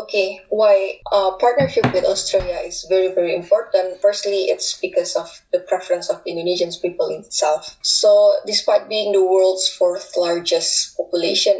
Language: English